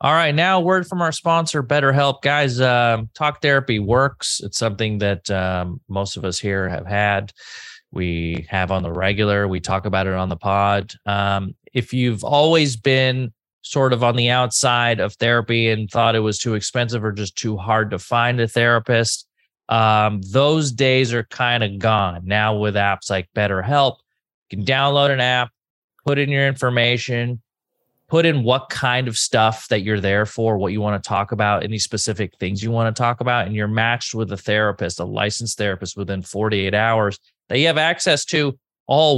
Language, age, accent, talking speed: English, 30-49, American, 190 wpm